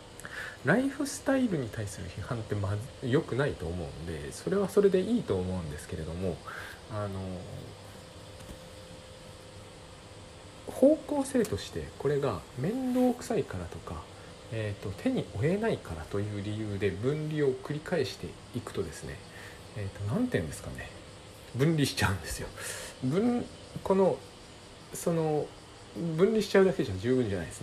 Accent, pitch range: native, 100-150 Hz